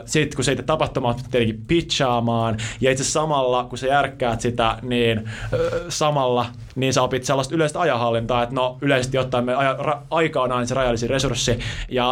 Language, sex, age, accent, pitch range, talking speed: Finnish, male, 20-39, native, 120-140 Hz, 185 wpm